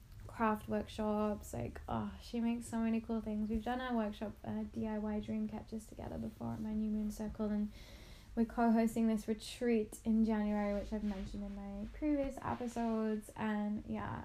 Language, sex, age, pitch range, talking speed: English, female, 10-29, 205-230 Hz, 175 wpm